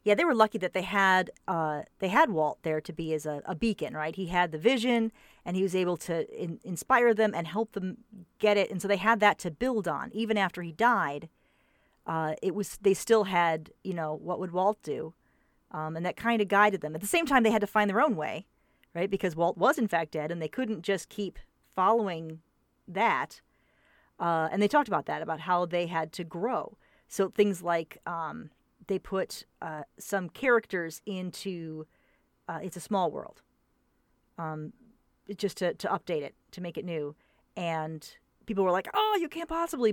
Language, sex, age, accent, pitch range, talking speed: English, female, 40-59, American, 170-225 Hz, 205 wpm